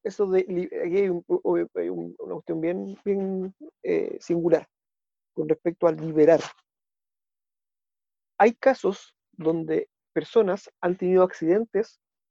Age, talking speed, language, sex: 40-59, 110 wpm, Spanish, male